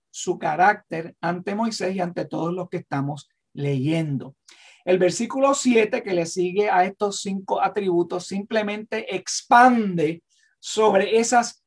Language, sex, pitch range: English, male, 170-235 Hz